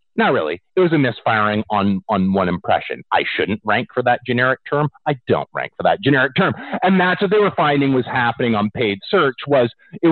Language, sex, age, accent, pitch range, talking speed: English, male, 40-59, American, 105-155 Hz, 220 wpm